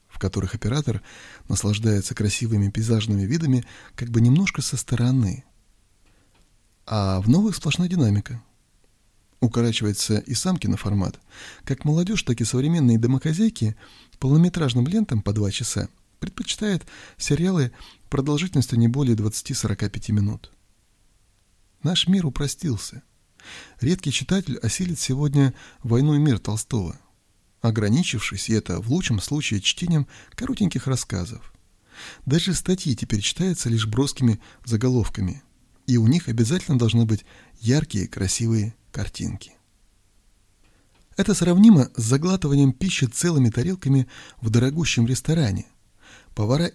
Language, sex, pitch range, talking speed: Russian, male, 105-145 Hz, 110 wpm